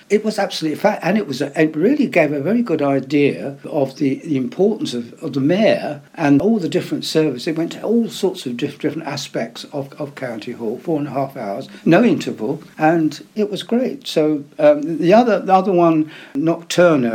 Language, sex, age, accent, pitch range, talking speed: English, male, 60-79, British, 135-180 Hz, 215 wpm